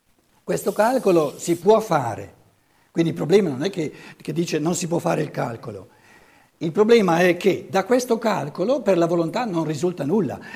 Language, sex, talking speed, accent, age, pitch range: Italian, male, 180 wpm, native, 60-79, 135-195 Hz